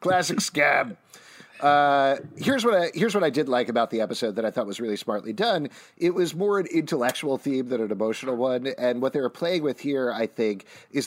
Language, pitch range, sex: English, 120-155 Hz, male